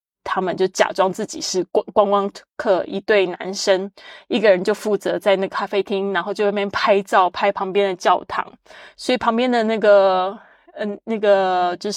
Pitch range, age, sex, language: 185-220 Hz, 20-39, female, Chinese